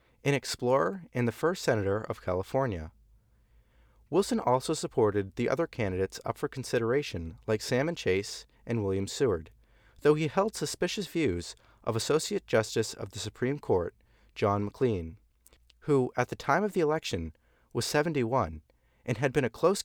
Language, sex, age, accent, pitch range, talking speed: English, male, 40-59, American, 85-140 Hz, 155 wpm